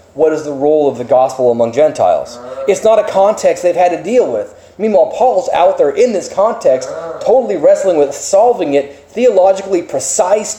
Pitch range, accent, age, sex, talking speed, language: 165-280 Hz, American, 30-49, male, 180 wpm, English